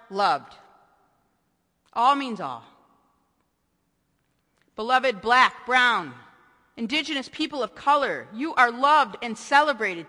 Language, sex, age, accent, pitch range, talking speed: English, female, 40-59, American, 195-280 Hz, 95 wpm